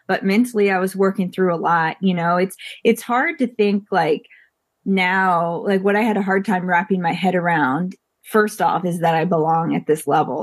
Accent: American